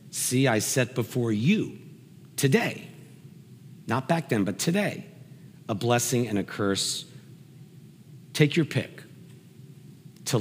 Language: English